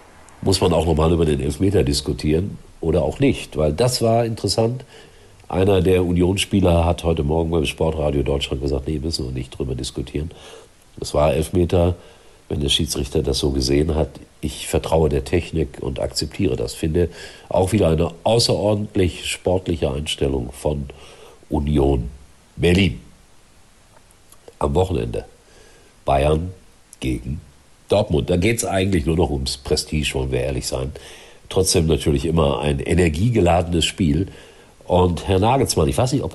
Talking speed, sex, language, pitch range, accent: 145 wpm, male, German, 70-90 Hz, German